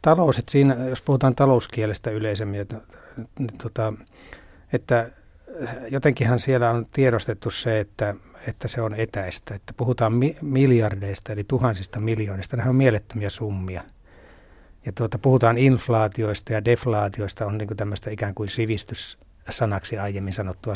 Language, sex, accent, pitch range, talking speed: Finnish, male, native, 100-120 Hz, 110 wpm